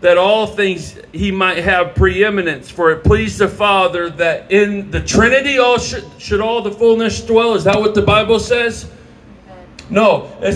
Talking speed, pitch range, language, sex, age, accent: 175 wpm, 180-210 Hz, English, male, 40-59, American